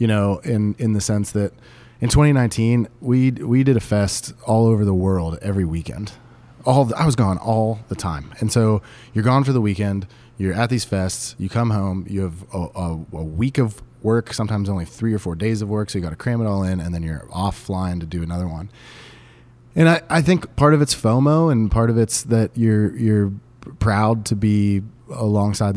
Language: English